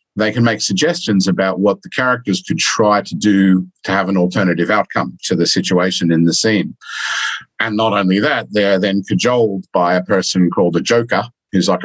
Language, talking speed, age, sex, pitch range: English, 200 wpm, 50-69, male, 90-105 Hz